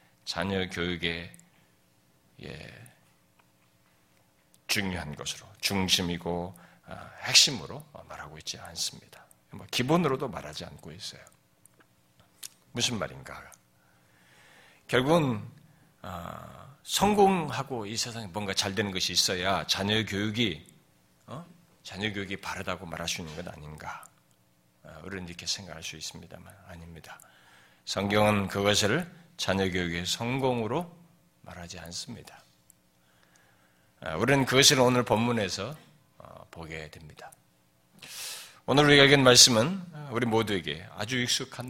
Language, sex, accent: Korean, male, native